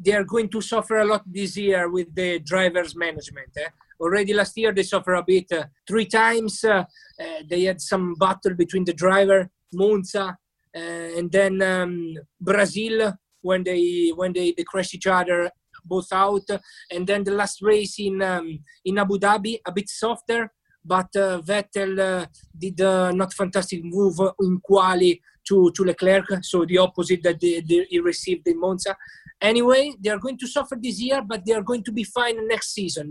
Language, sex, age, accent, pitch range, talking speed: English, male, 20-39, Italian, 180-220 Hz, 185 wpm